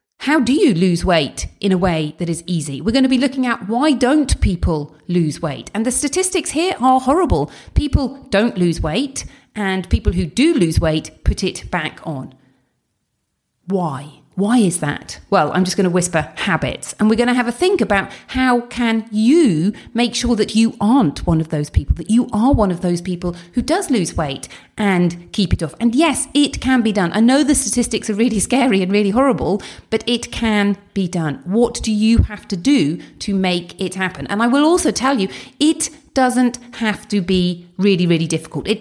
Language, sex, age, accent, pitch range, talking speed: English, female, 40-59, British, 180-255 Hz, 205 wpm